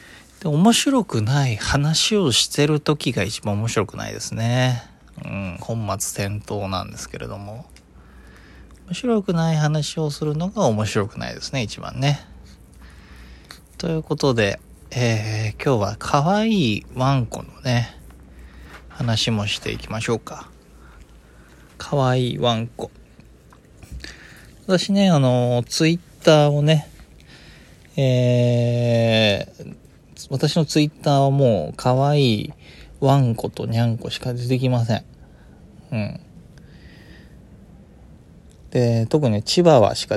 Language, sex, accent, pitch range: Japanese, male, native, 100-145 Hz